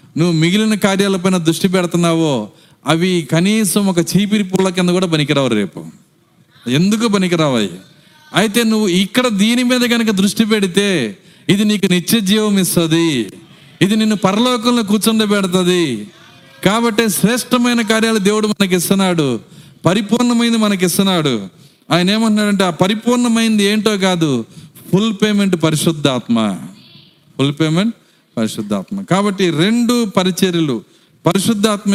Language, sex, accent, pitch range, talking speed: Telugu, male, native, 160-210 Hz, 105 wpm